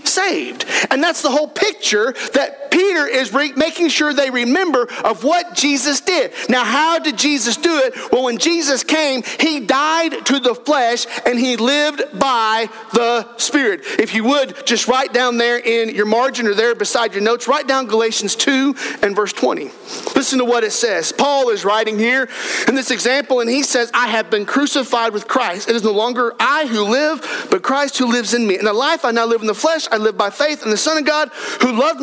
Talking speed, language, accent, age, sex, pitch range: 215 wpm, English, American, 40-59, male, 240-310 Hz